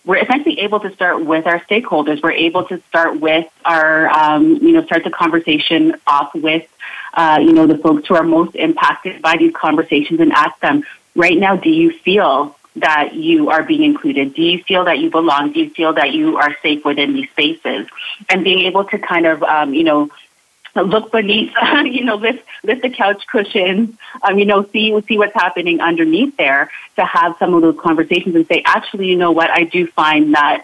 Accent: American